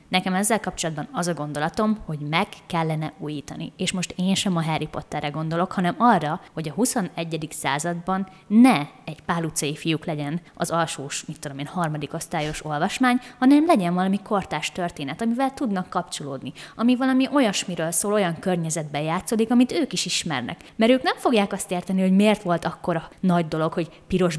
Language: Hungarian